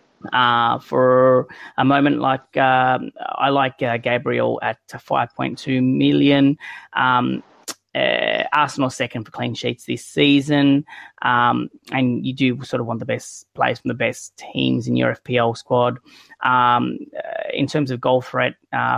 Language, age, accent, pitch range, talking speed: English, 20-39, Australian, 115-140 Hz, 150 wpm